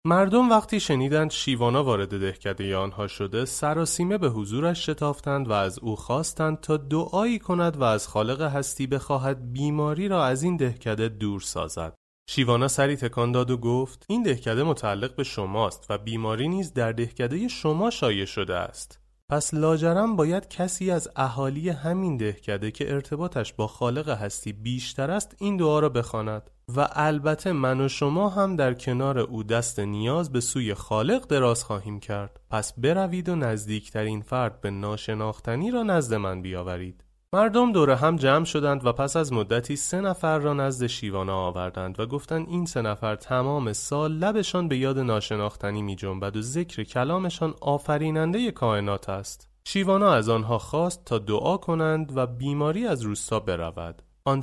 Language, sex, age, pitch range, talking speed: Persian, male, 30-49, 110-155 Hz, 160 wpm